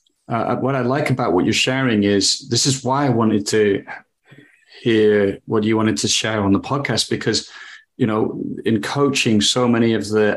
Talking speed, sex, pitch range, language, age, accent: 190 wpm, male, 105-125 Hz, English, 30-49, British